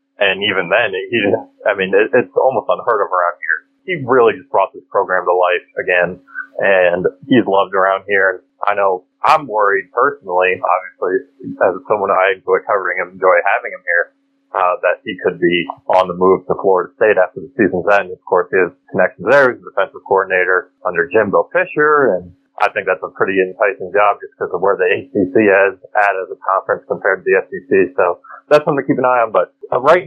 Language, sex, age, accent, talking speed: English, male, 30-49, American, 205 wpm